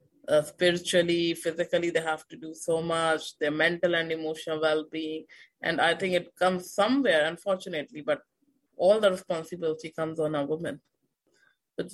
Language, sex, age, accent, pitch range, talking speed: English, female, 20-39, Indian, 155-185 Hz, 150 wpm